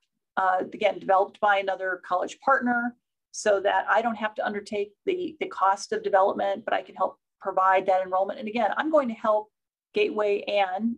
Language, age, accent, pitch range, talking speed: English, 40-59, American, 190-235 Hz, 185 wpm